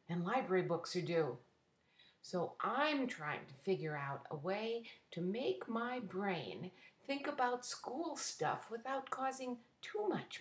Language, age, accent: English, 50-69, American